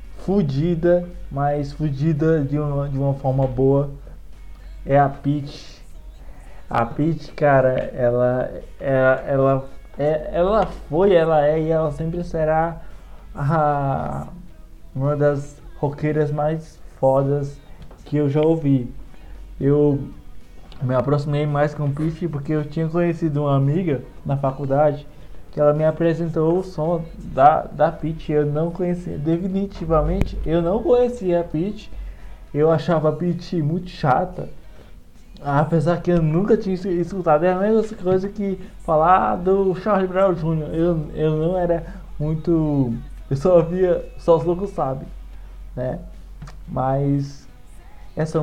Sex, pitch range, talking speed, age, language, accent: male, 140-170 Hz, 130 wpm, 20-39, Portuguese, Brazilian